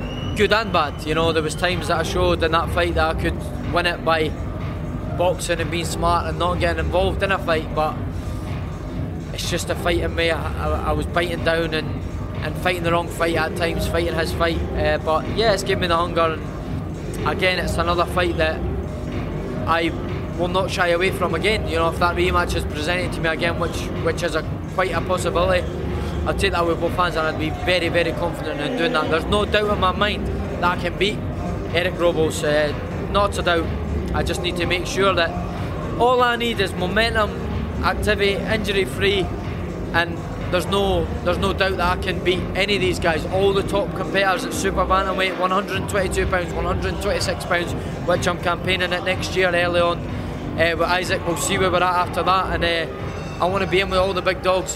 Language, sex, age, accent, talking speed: English, male, 20-39, British, 210 wpm